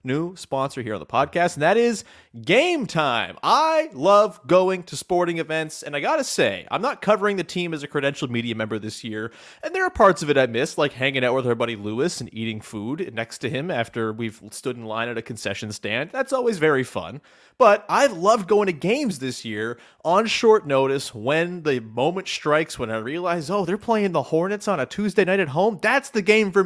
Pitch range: 130-205 Hz